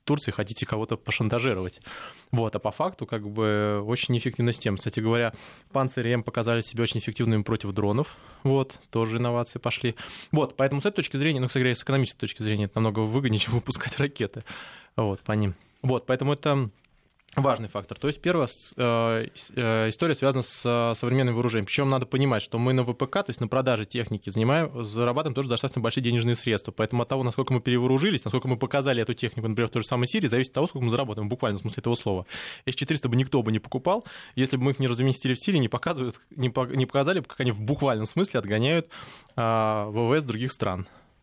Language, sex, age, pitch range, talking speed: Russian, male, 20-39, 115-135 Hz, 200 wpm